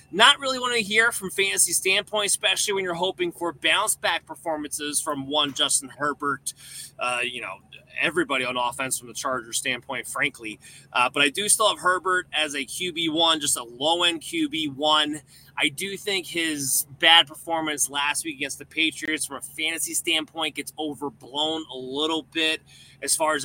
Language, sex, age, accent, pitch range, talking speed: English, male, 20-39, American, 135-165 Hz, 170 wpm